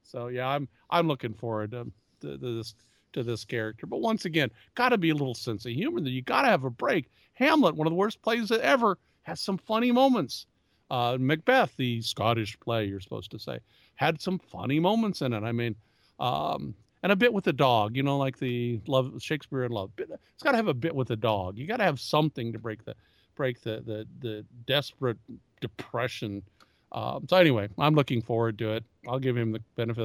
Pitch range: 115-145 Hz